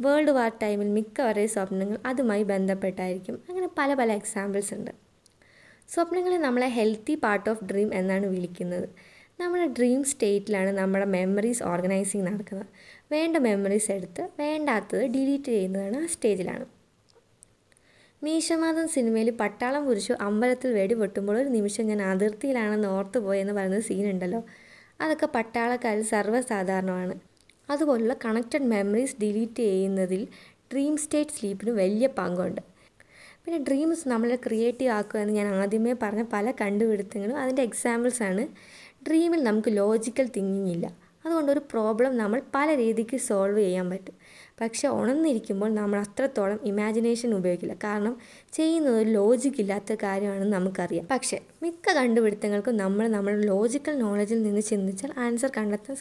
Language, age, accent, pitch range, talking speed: Malayalam, 20-39, native, 200-260 Hz, 115 wpm